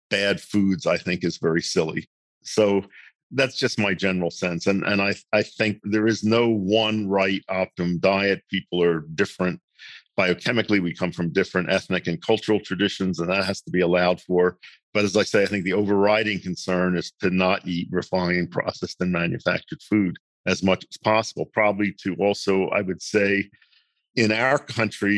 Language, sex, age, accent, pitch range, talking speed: English, male, 50-69, American, 90-105 Hz, 180 wpm